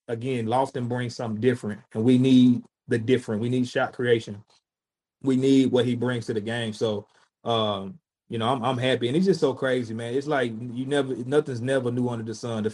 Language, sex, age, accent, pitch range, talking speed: English, male, 30-49, American, 115-130 Hz, 215 wpm